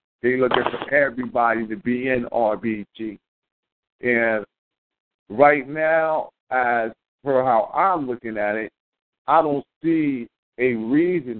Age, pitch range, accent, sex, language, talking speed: 50-69, 120-145 Hz, American, male, English, 120 wpm